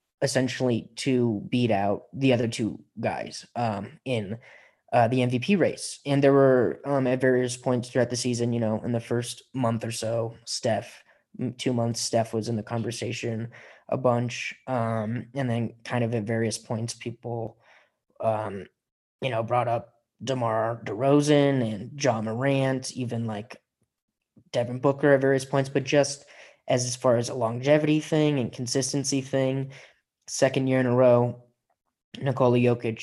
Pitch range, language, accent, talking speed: 115-135 Hz, English, American, 160 wpm